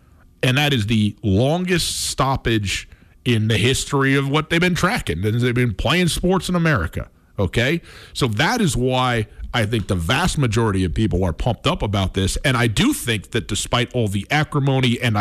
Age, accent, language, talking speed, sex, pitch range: 40-59, American, English, 185 wpm, male, 105-135 Hz